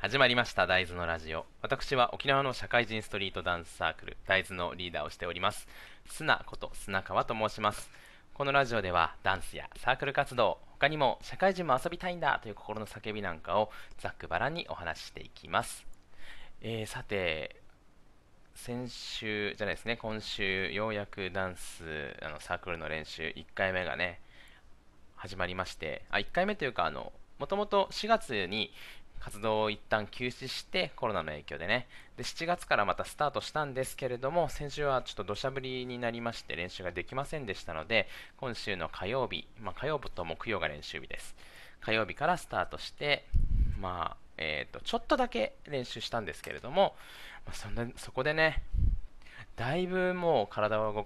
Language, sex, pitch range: Japanese, male, 90-130 Hz